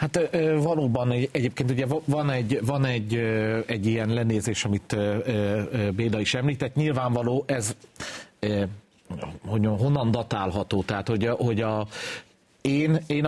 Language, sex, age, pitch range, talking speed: Hungarian, male, 40-59, 105-130 Hz, 100 wpm